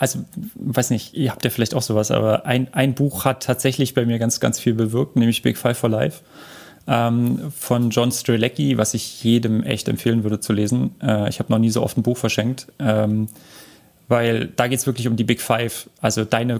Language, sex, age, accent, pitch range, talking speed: German, male, 30-49, German, 110-130 Hz, 220 wpm